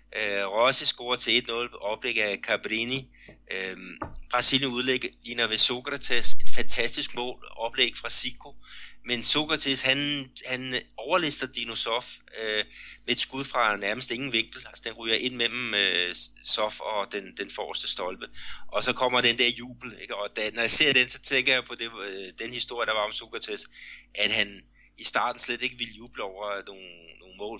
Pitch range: 100-125 Hz